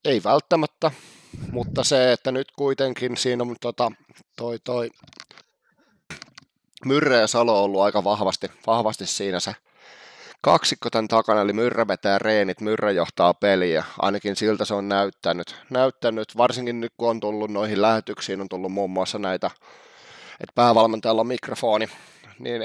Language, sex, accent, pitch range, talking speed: Finnish, male, native, 100-120 Hz, 145 wpm